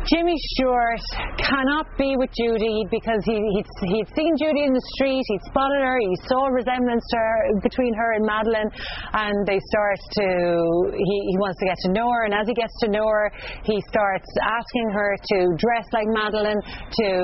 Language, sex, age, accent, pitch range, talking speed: English, female, 30-49, Irish, 210-250 Hz, 195 wpm